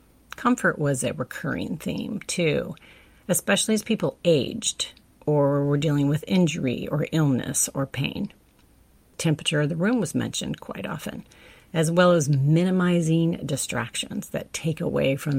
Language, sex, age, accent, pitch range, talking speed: English, female, 40-59, American, 135-175 Hz, 140 wpm